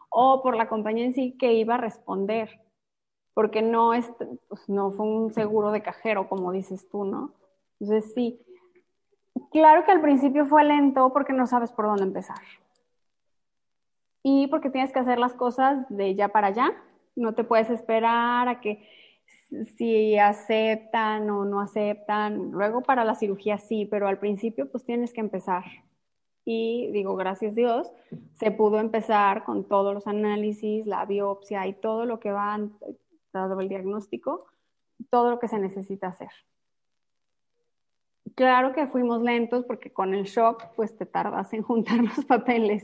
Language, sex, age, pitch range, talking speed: Spanish, female, 20-39, 205-245 Hz, 160 wpm